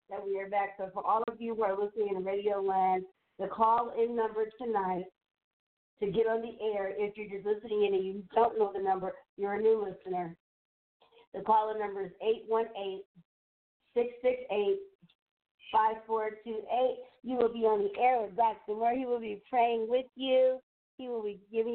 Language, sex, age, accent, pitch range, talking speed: English, female, 50-69, American, 200-235 Hz, 175 wpm